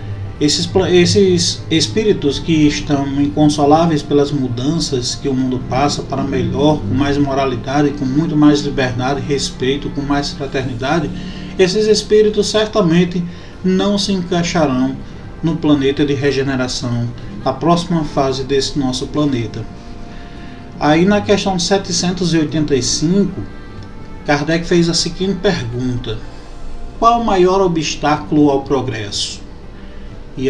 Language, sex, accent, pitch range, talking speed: Portuguese, male, Brazilian, 135-165 Hz, 110 wpm